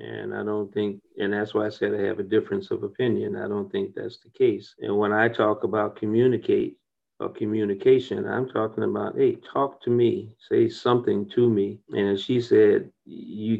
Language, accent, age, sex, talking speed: English, American, 40-59, male, 200 wpm